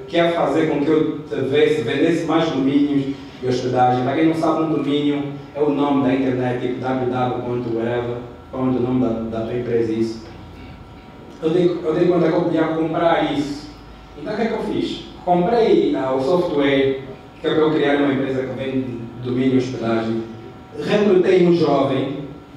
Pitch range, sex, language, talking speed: 125-160 Hz, male, Portuguese, 185 wpm